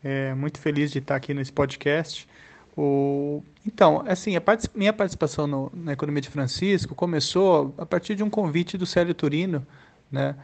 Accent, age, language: Brazilian, 20-39, Portuguese